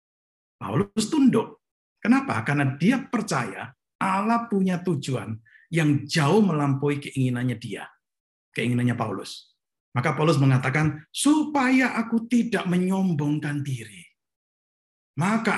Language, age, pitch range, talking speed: English, 50-69, 125-185 Hz, 95 wpm